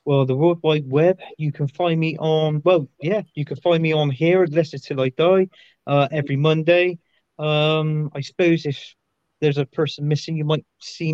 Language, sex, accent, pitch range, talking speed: English, male, British, 125-165 Hz, 205 wpm